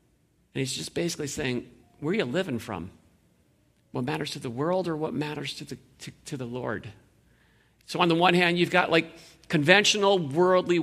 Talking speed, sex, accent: 190 wpm, male, American